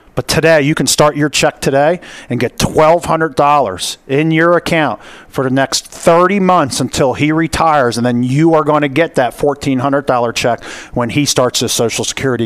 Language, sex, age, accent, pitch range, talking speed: English, male, 40-59, American, 125-155 Hz, 185 wpm